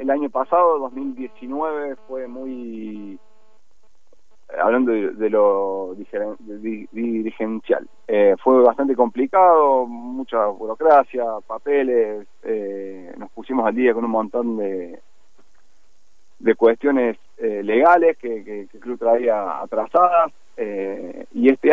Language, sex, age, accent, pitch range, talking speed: Spanish, male, 30-49, Argentinian, 110-140 Hz, 125 wpm